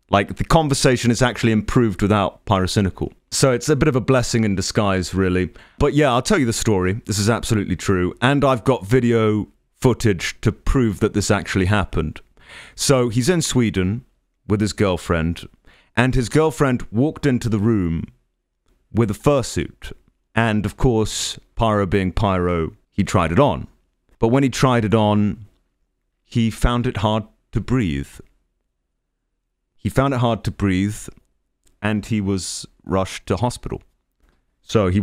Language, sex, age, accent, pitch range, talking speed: English, male, 30-49, British, 90-120 Hz, 160 wpm